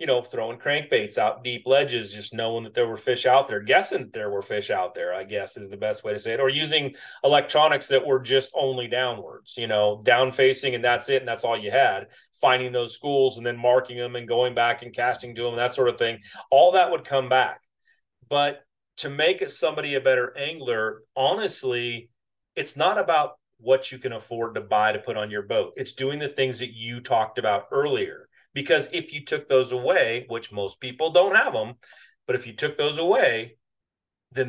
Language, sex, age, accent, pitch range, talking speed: English, male, 30-49, American, 120-150 Hz, 215 wpm